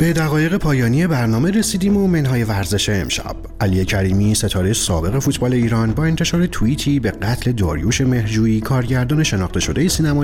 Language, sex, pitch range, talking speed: Persian, male, 95-135 Hz, 150 wpm